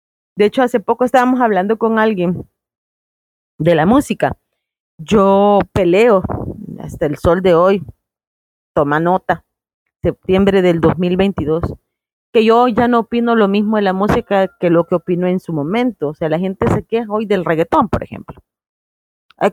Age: 40-59